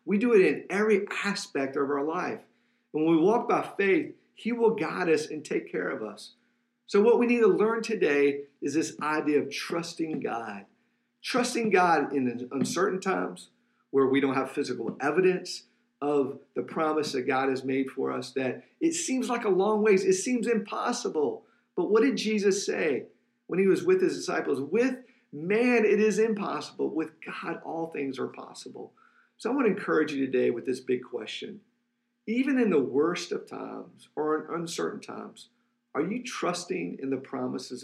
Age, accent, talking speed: 50-69, American, 185 wpm